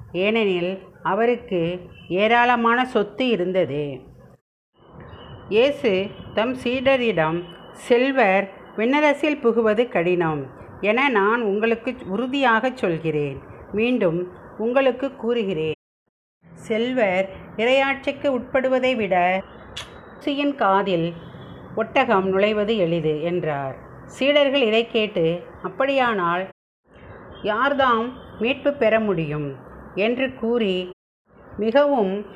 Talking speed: 75 wpm